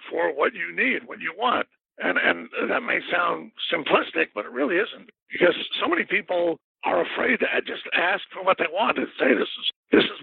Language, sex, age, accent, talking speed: English, male, 60-79, American, 210 wpm